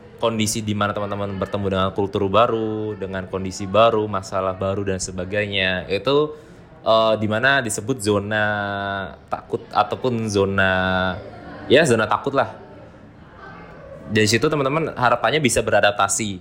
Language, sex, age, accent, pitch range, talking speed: Indonesian, male, 20-39, native, 105-125 Hz, 115 wpm